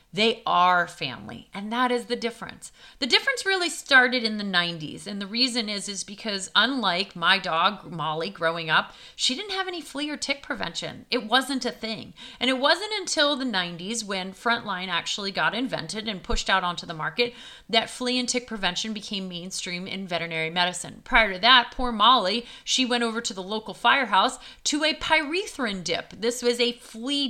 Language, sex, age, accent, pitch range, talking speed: English, female, 30-49, American, 200-275 Hz, 190 wpm